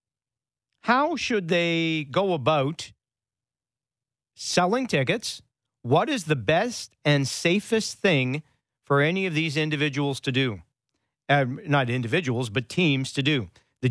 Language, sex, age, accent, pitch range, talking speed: English, male, 50-69, American, 130-165 Hz, 125 wpm